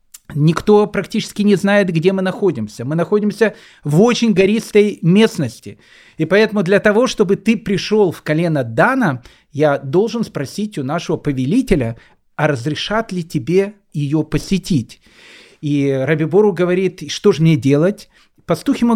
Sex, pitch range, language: male, 150-205 Hz, Russian